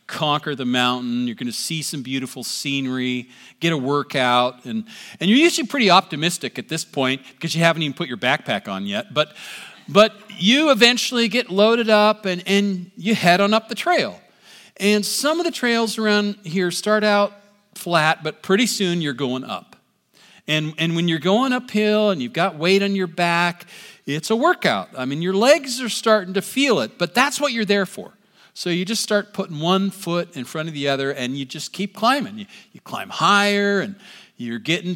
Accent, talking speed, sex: American, 200 wpm, male